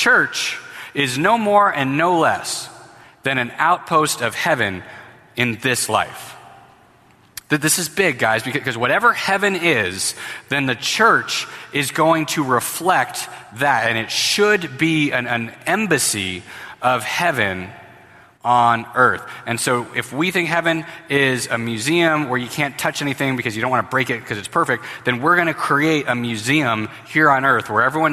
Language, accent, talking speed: English, American, 165 wpm